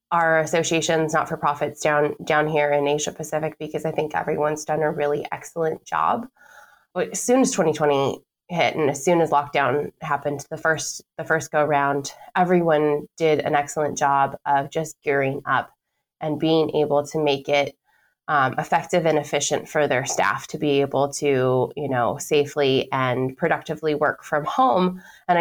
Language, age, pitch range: English, 20-39, 145-165 Hz